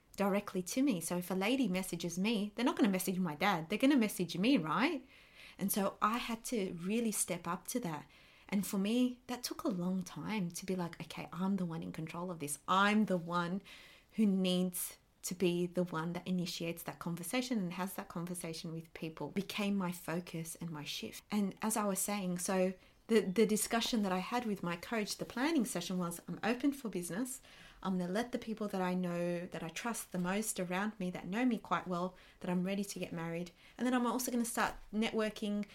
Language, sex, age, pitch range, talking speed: English, female, 30-49, 180-245 Hz, 225 wpm